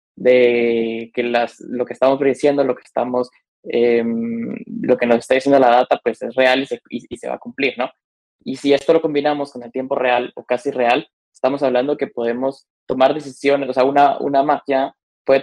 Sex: male